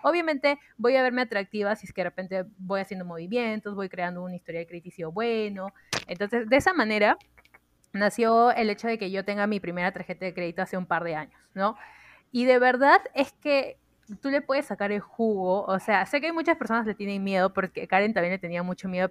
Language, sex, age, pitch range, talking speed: Spanish, female, 20-39, 190-235 Hz, 225 wpm